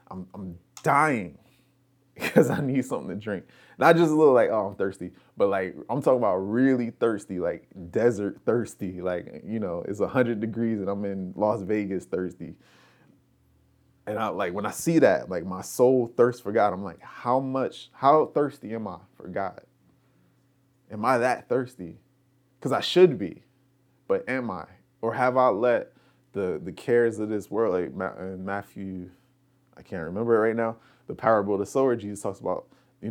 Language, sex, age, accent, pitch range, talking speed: English, male, 20-39, American, 95-130 Hz, 180 wpm